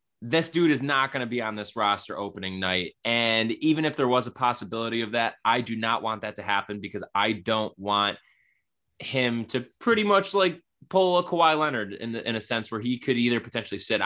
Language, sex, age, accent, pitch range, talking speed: English, male, 20-39, American, 110-135 Hz, 220 wpm